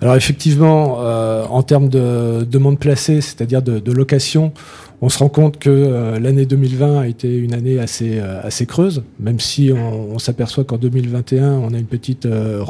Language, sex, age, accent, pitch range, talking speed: French, male, 40-59, French, 125-145 Hz, 190 wpm